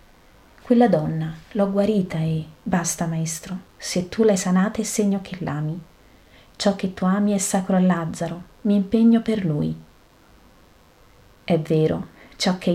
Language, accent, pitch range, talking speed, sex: Italian, native, 165-200 Hz, 145 wpm, female